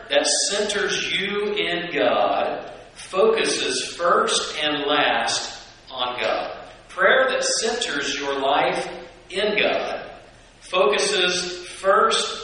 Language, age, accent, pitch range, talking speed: English, 50-69, American, 140-175 Hz, 95 wpm